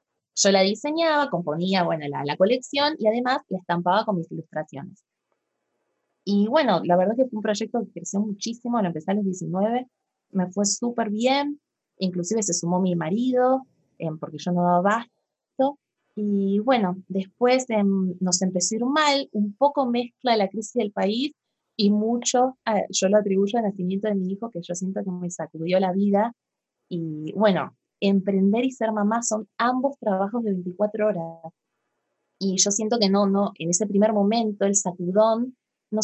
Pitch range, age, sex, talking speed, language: 190-245 Hz, 20-39, female, 180 wpm, Spanish